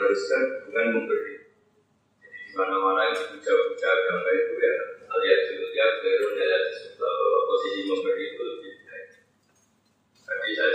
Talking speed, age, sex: 85 wpm, 30-49, male